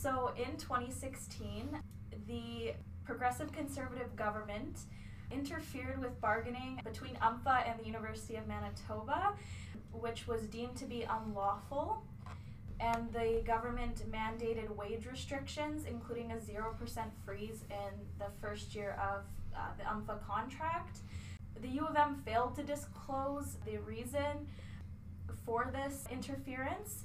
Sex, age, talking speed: female, 10-29, 120 wpm